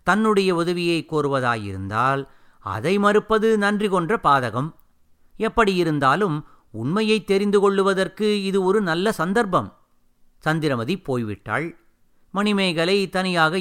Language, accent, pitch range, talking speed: Tamil, native, 140-190 Hz, 90 wpm